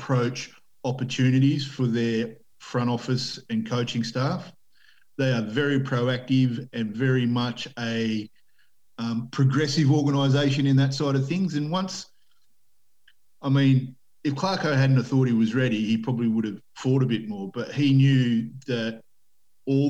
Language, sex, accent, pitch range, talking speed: English, male, Australian, 115-135 Hz, 150 wpm